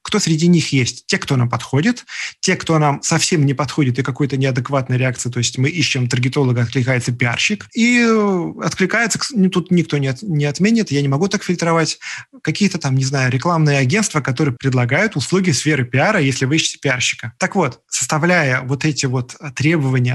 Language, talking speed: Russian, 175 wpm